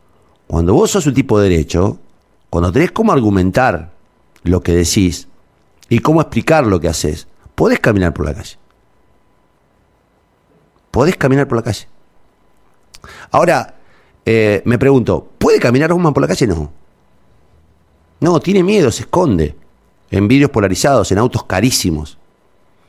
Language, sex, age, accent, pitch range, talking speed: Spanish, male, 50-69, Argentinian, 85-145 Hz, 140 wpm